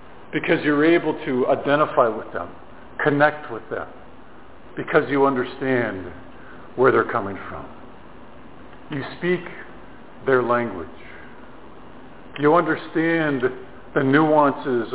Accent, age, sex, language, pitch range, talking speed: American, 50-69, male, English, 150-195 Hz, 100 wpm